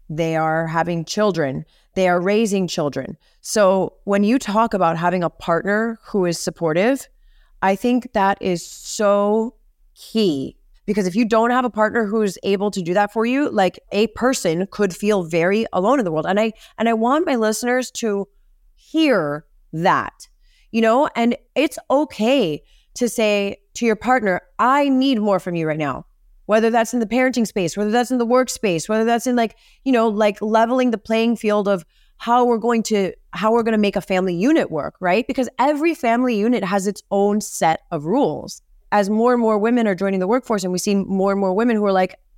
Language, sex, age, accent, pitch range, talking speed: English, female, 30-49, American, 190-235 Hz, 200 wpm